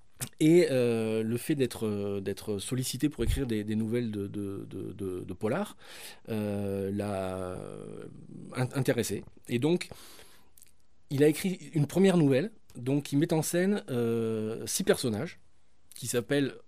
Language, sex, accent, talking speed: French, male, French, 135 wpm